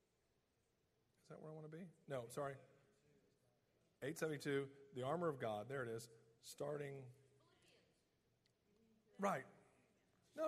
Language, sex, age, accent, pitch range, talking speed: English, male, 40-59, American, 120-155 Hz, 115 wpm